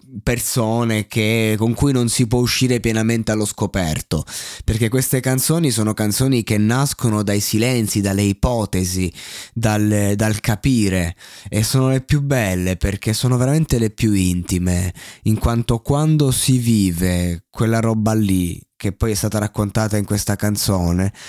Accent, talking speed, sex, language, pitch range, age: native, 145 wpm, male, Italian, 95-115 Hz, 20-39